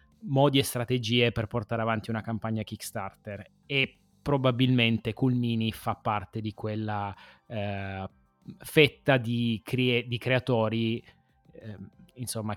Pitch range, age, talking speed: 105-125 Hz, 20-39, 115 wpm